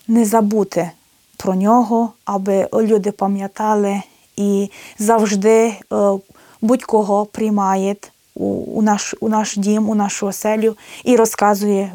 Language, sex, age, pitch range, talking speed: Ukrainian, female, 20-39, 195-230 Hz, 100 wpm